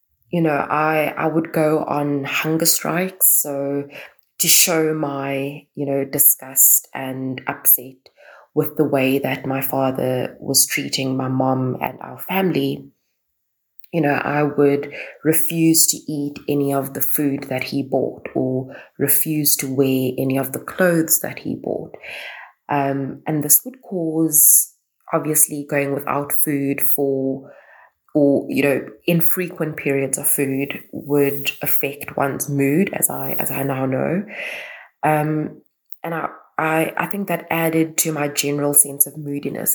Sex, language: female, English